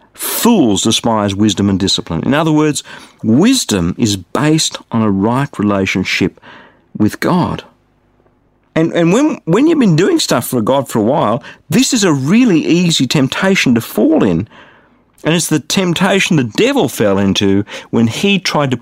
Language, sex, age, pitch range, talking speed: English, male, 50-69, 115-190 Hz, 165 wpm